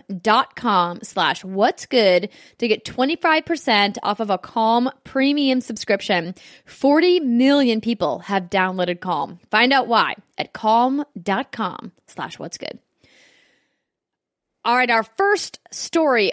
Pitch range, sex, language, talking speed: 205-270 Hz, female, English, 120 wpm